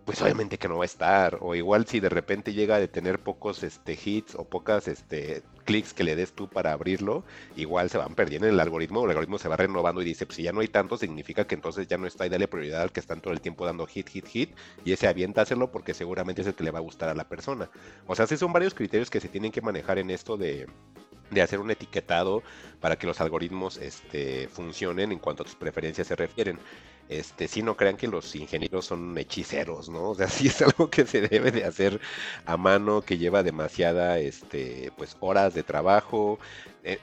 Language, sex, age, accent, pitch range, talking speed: Spanish, male, 50-69, Mexican, 85-100 Hz, 240 wpm